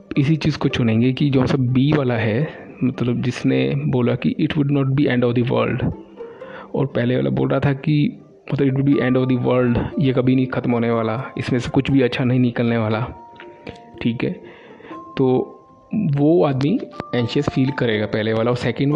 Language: Hindi